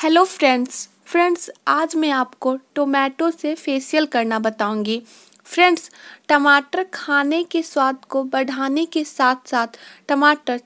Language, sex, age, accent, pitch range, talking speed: Hindi, female, 20-39, native, 260-330 Hz, 125 wpm